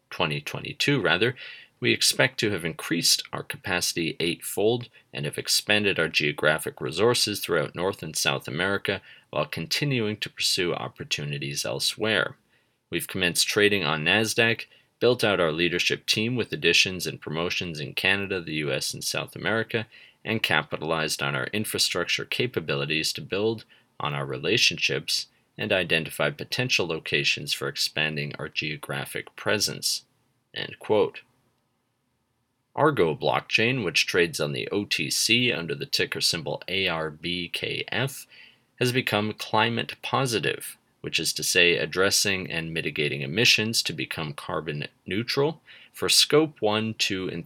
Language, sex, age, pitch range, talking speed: English, male, 30-49, 80-115 Hz, 130 wpm